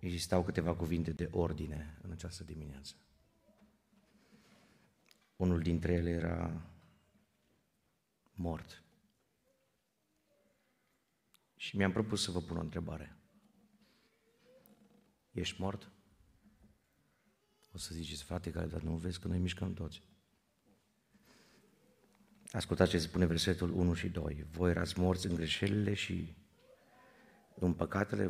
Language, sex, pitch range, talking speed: Romanian, male, 85-115 Hz, 105 wpm